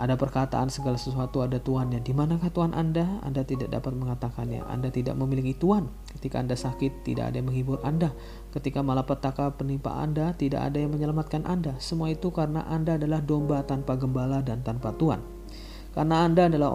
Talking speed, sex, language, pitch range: 175 wpm, male, Indonesian, 130-160 Hz